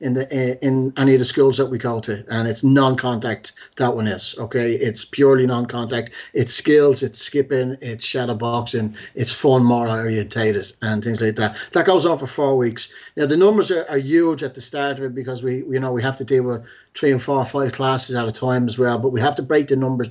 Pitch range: 120-140 Hz